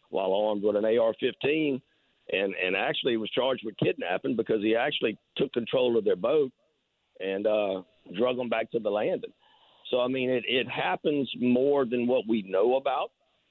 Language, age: English, 50-69